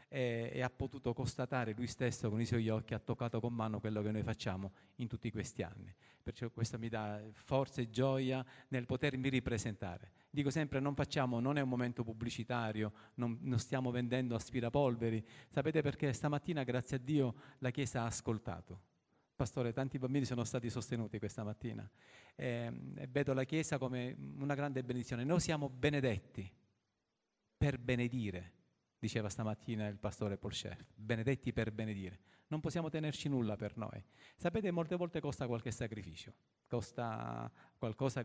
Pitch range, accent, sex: 110-135 Hz, native, male